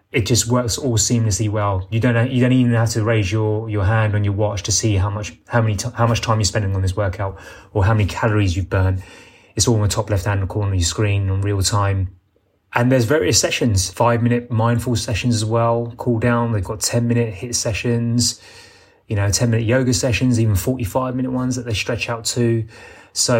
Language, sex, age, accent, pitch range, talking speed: English, male, 20-39, British, 100-115 Hz, 230 wpm